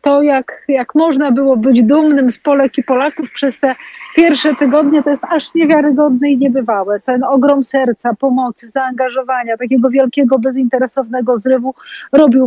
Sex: female